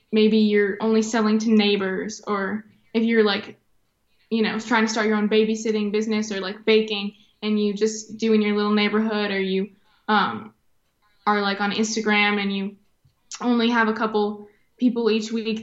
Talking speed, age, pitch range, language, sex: 175 wpm, 10-29, 210-235 Hz, English, female